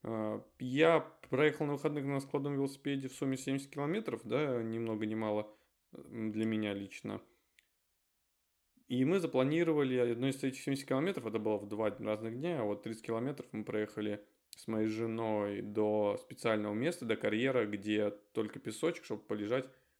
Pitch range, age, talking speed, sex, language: 105-130 Hz, 20-39, 150 wpm, male, Russian